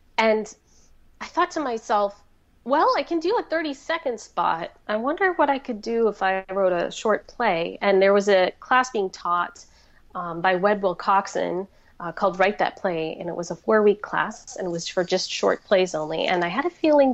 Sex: female